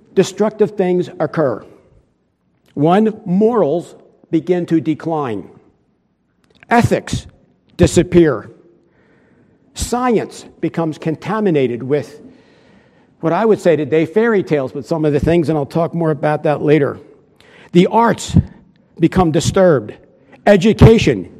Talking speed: 105 wpm